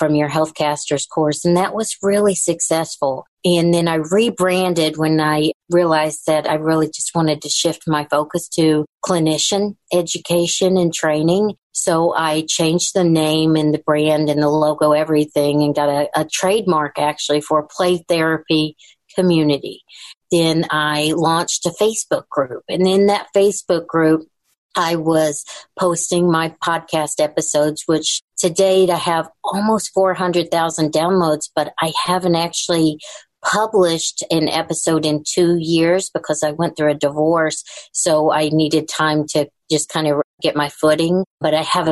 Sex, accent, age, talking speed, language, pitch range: female, American, 50-69, 155 wpm, English, 155-175 Hz